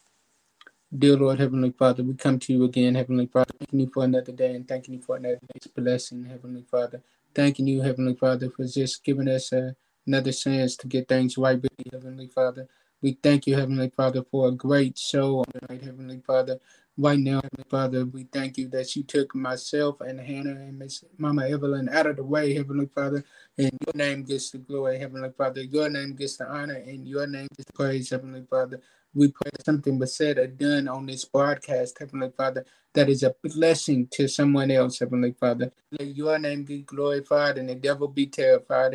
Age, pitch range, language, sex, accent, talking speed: 20-39, 130-150 Hz, English, male, American, 205 wpm